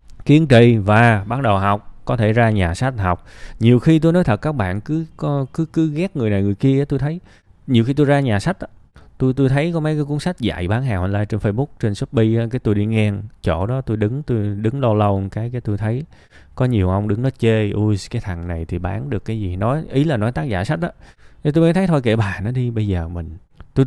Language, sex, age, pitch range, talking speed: Vietnamese, male, 20-39, 100-140 Hz, 260 wpm